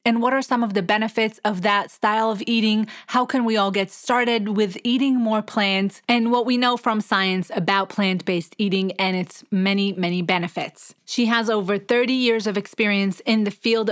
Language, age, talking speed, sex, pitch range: English, 30-49, 200 wpm, female, 195-230 Hz